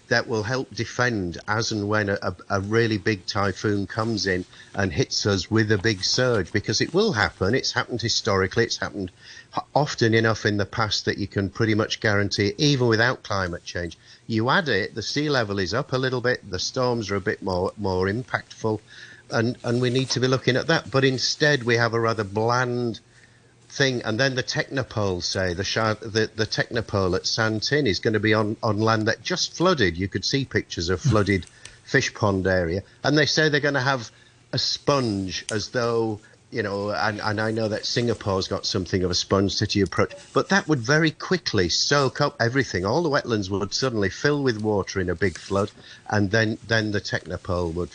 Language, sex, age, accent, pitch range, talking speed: English, male, 50-69, British, 100-125 Hz, 205 wpm